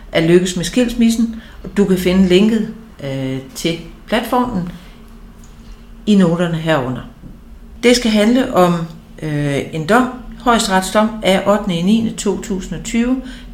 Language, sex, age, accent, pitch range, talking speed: Danish, female, 60-79, native, 165-210 Hz, 110 wpm